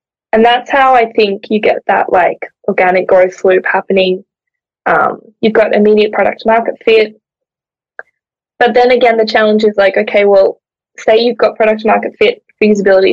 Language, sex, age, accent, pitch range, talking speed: English, female, 10-29, Australian, 200-230 Hz, 165 wpm